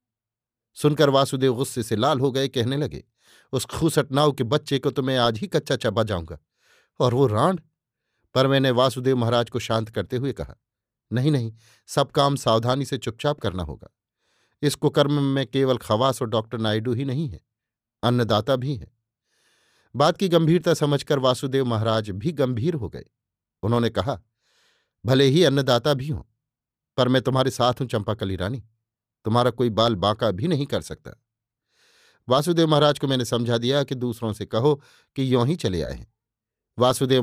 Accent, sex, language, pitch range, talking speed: native, male, Hindi, 115-140 Hz, 170 wpm